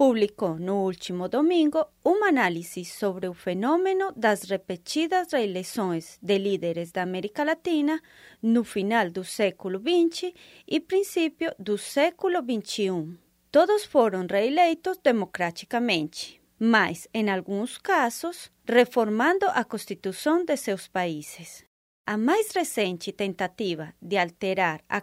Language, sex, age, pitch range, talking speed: Portuguese, female, 30-49, 185-305 Hz, 115 wpm